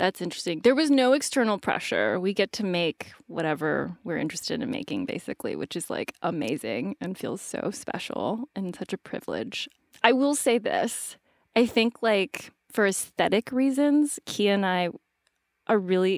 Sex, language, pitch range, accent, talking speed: female, English, 190-270 Hz, American, 165 wpm